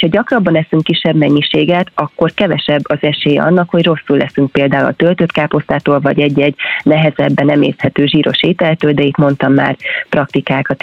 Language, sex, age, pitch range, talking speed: Hungarian, female, 30-49, 145-170 Hz, 155 wpm